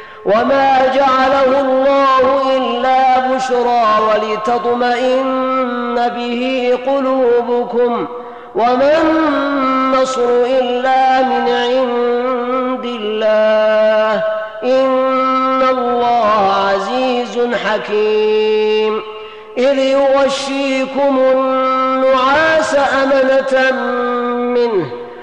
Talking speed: 55 wpm